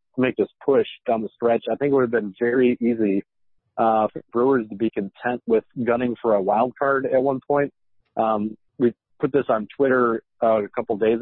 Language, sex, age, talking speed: English, male, 50-69, 210 wpm